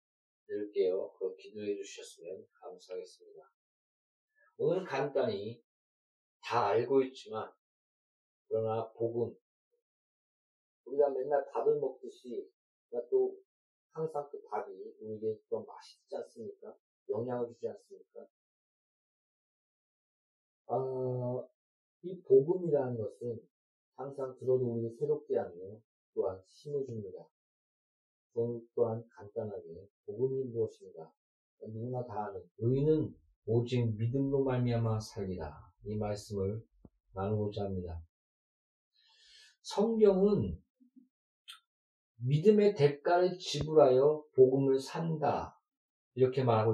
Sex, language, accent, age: male, Korean, native, 40-59